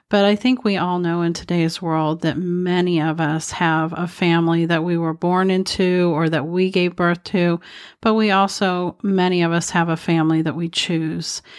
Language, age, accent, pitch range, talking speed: English, 40-59, American, 165-185 Hz, 200 wpm